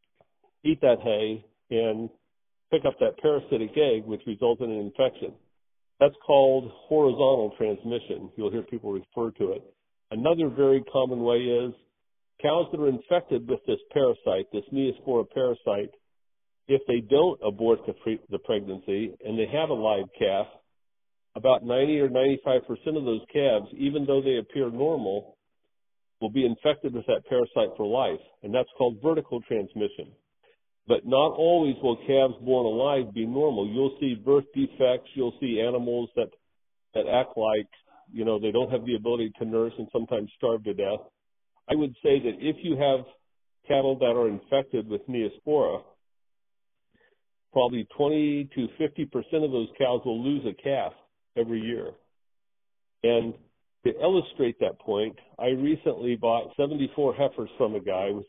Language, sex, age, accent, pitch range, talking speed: English, male, 50-69, American, 115-150 Hz, 155 wpm